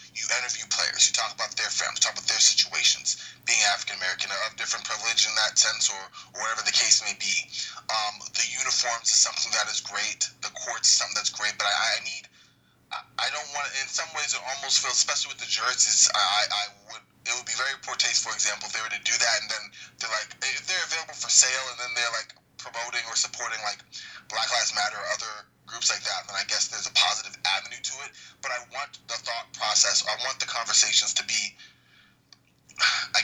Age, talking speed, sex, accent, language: 20-39, 225 wpm, male, American, English